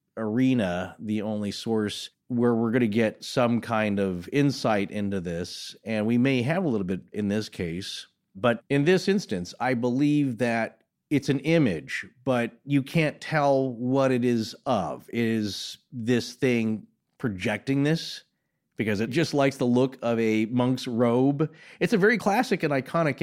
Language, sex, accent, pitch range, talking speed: English, male, American, 105-145 Hz, 165 wpm